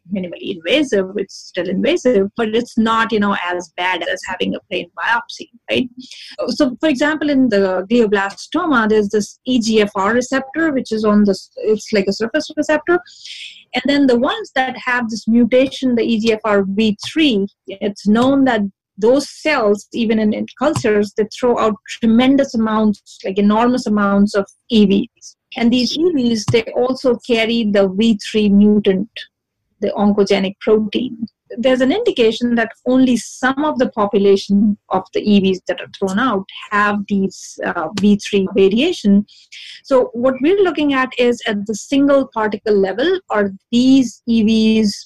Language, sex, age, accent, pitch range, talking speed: English, female, 30-49, Indian, 205-255 Hz, 150 wpm